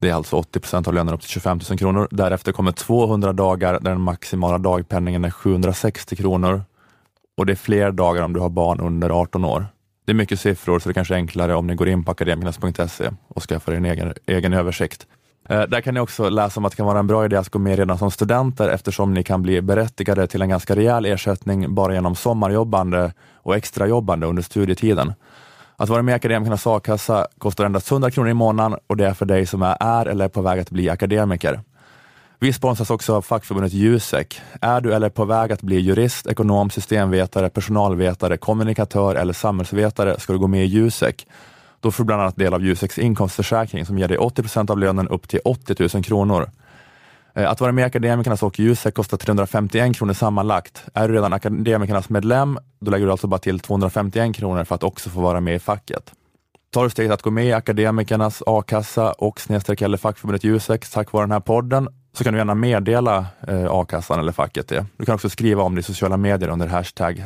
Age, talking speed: 20-39, 215 wpm